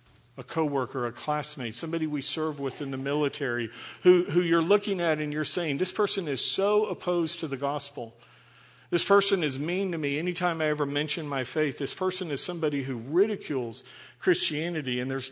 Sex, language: male, English